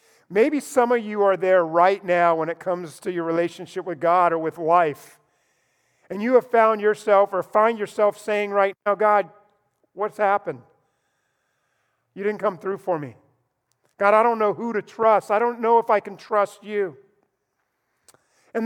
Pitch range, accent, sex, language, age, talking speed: 195-265 Hz, American, male, English, 50-69, 175 wpm